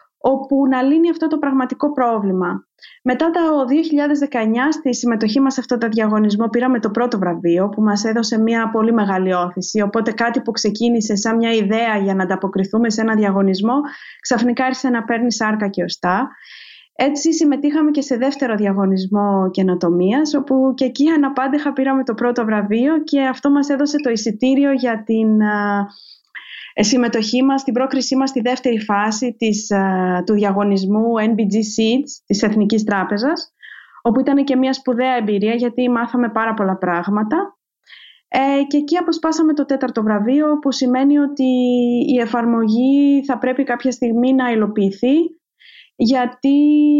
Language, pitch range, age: Greek, 220-270 Hz, 20-39